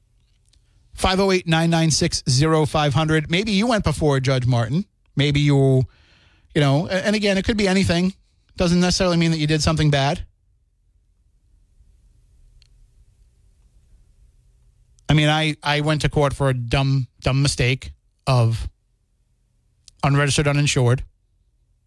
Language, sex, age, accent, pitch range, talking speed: English, male, 30-49, American, 115-160 Hz, 130 wpm